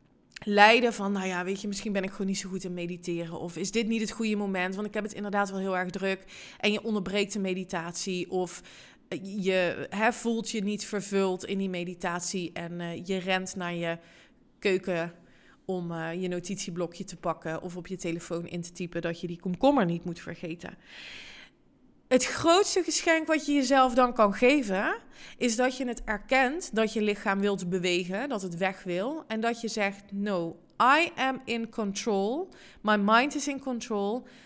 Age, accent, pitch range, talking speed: 20-39, Dutch, 185-240 Hz, 190 wpm